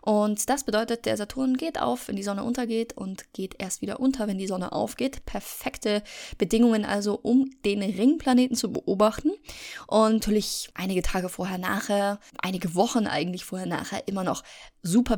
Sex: female